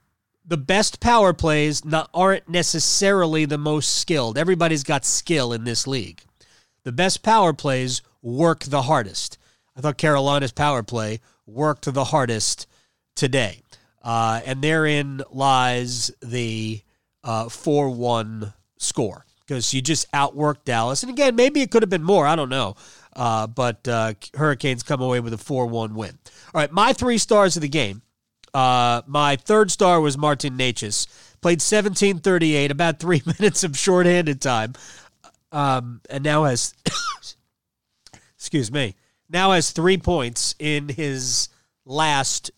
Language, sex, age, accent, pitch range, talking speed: English, male, 30-49, American, 125-170 Hz, 145 wpm